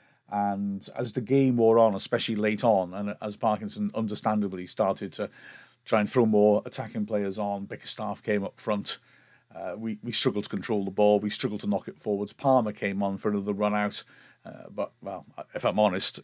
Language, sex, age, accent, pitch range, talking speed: English, male, 40-59, British, 105-130 Hz, 195 wpm